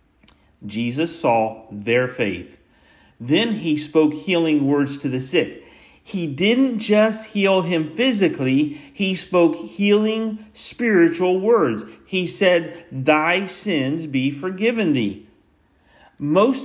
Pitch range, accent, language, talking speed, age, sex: 160-215 Hz, American, English, 110 wpm, 50-69, male